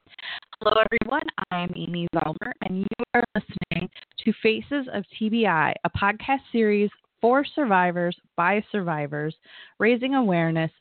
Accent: American